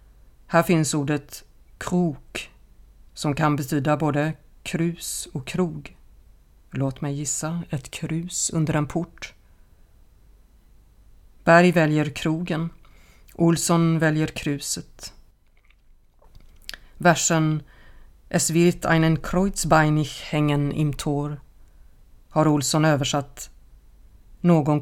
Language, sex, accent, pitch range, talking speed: Swedish, female, native, 140-165 Hz, 90 wpm